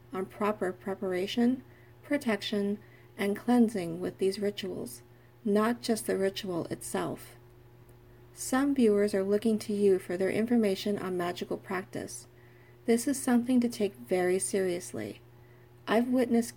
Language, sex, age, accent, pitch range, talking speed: English, female, 40-59, American, 180-225 Hz, 125 wpm